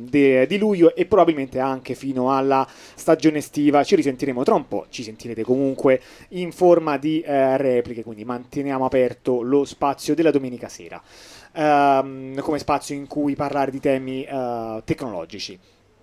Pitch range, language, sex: 125-150 Hz, Italian, male